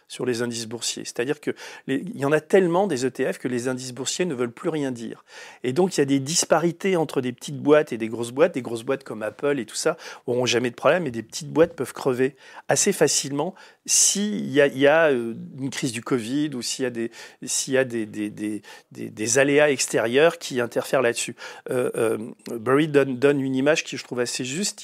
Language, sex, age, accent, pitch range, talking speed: French, male, 40-59, French, 125-155 Hz, 230 wpm